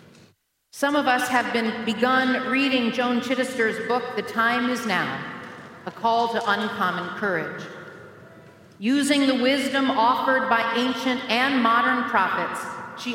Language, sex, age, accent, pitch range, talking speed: English, female, 40-59, American, 220-270 Hz, 130 wpm